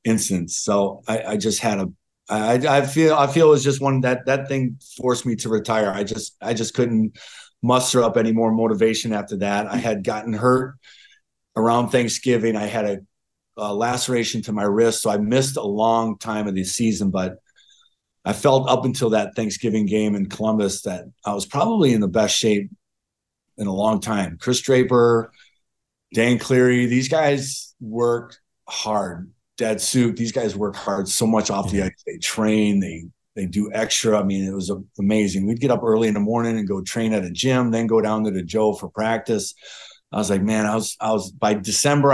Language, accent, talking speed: English, American, 200 wpm